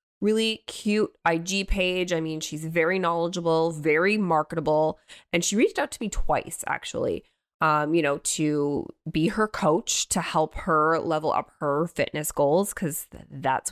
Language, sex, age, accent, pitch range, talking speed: English, female, 20-39, American, 155-195 Hz, 160 wpm